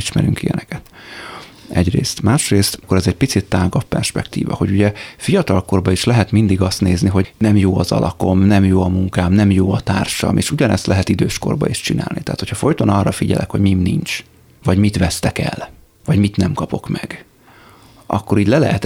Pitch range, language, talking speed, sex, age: 95-110 Hz, Hungarian, 185 wpm, male, 30-49